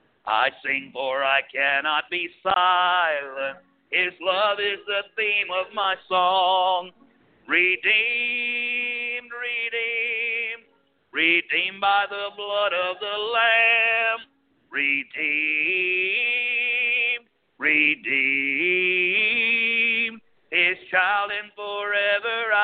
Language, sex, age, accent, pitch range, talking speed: English, male, 50-69, American, 180-230 Hz, 80 wpm